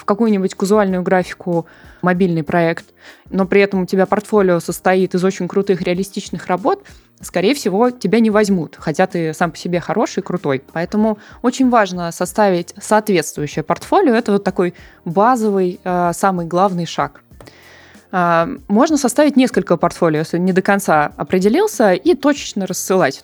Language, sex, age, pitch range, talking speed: Russian, female, 20-39, 175-210 Hz, 140 wpm